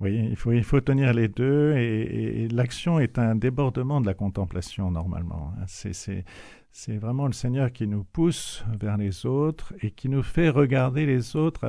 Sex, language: male, French